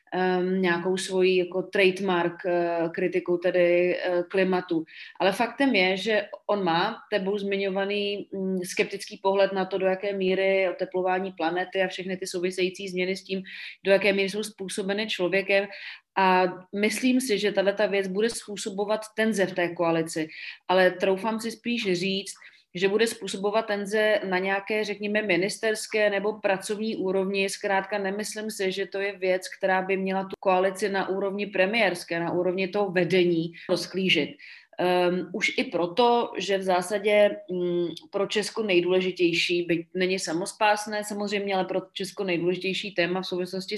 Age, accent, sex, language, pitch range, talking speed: 30-49, native, female, Czech, 180-205 Hz, 150 wpm